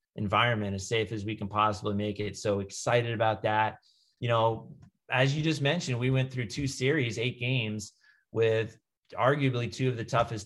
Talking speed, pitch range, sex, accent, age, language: 185 wpm, 105-135 Hz, male, American, 30-49, English